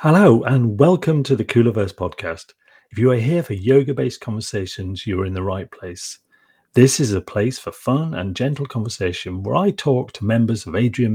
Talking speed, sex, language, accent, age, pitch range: 200 wpm, male, English, British, 40-59, 105-130 Hz